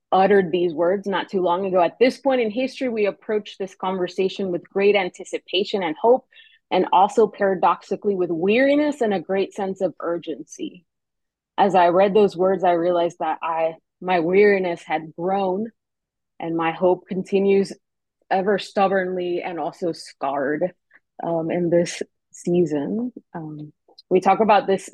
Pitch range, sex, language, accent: 170-205 Hz, female, English, American